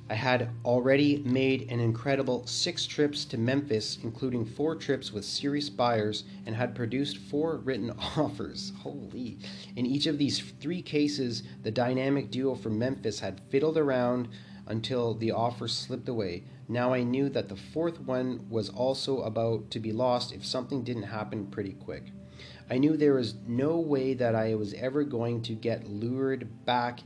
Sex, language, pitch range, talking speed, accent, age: male, English, 110-135 Hz, 170 wpm, American, 30-49